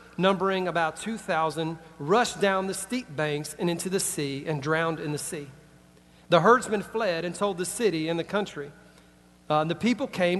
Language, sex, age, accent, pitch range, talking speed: English, male, 40-59, American, 150-195 Hz, 180 wpm